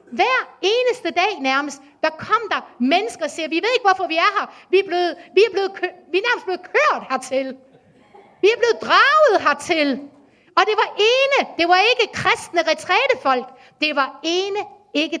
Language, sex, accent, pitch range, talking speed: Danish, female, native, 275-395 Hz, 190 wpm